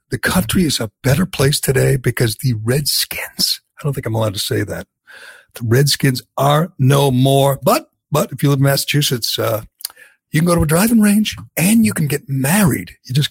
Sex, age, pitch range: male, 60-79, 130-160 Hz